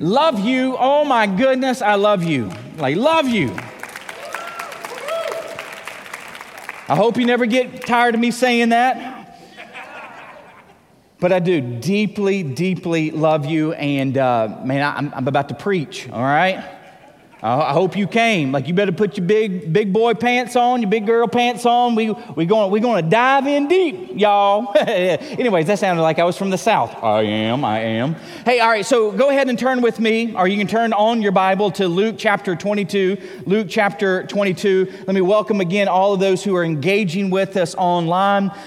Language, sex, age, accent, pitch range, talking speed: English, male, 30-49, American, 180-230 Hz, 180 wpm